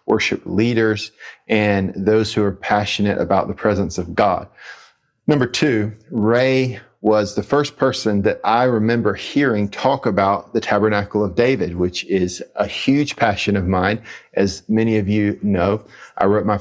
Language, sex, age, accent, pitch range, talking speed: English, male, 40-59, American, 100-110 Hz, 160 wpm